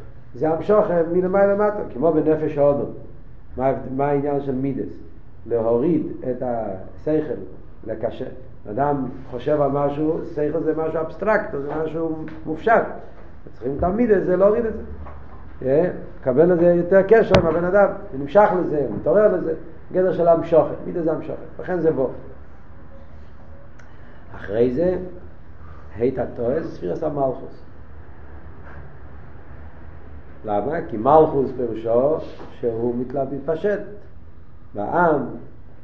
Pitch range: 110-165 Hz